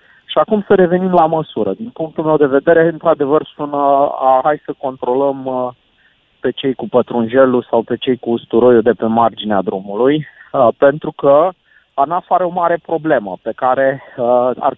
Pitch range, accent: 130-165 Hz, native